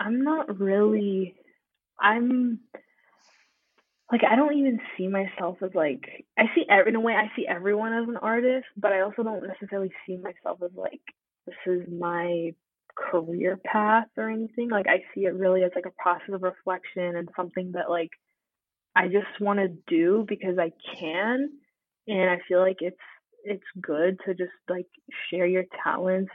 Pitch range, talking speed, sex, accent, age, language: 180-215 Hz, 170 wpm, female, American, 20-39, English